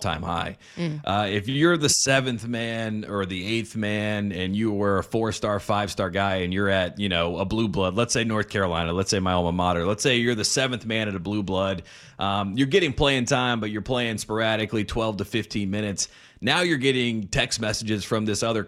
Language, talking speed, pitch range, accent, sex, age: English, 220 wpm, 95-120 Hz, American, male, 30-49